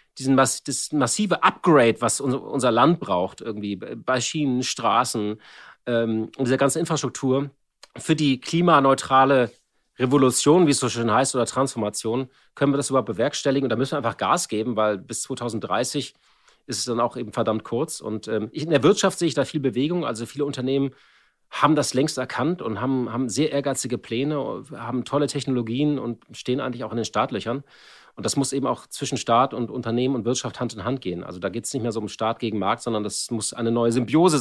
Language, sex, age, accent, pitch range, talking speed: German, male, 40-59, German, 115-145 Hz, 200 wpm